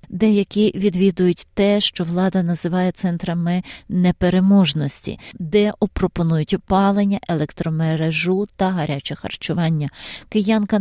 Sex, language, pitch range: female, Ukrainian, 170-205 Hz